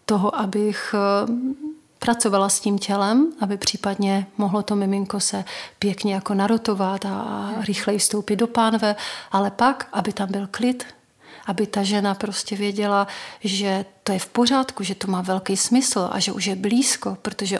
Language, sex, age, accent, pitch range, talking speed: Czech, female, 40-59, native, 195-220 Hz, 160 wpm